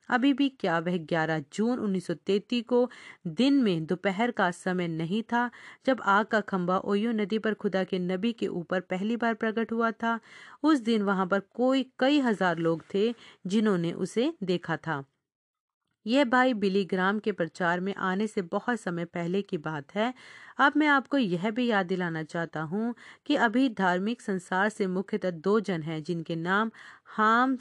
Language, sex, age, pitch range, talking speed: Hindi, female, 40-59, 175-235 Hz, 175 wpm